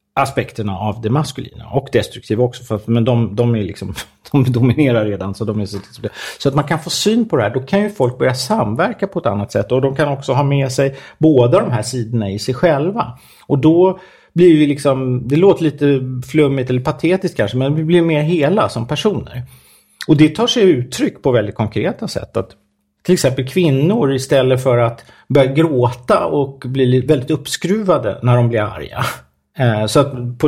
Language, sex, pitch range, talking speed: English, male, 115-150 Hz, 195 wpm